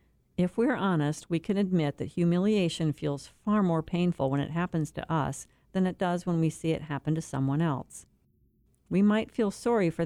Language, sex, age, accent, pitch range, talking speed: English, female, 50-69, American, 155-195 Hz, 195 wpm